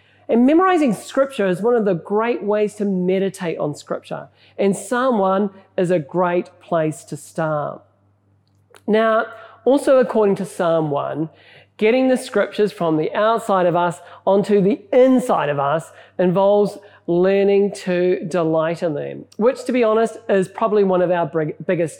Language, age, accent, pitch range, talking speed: English, 40-59, Australian, 180-235 Hz, 155 wpm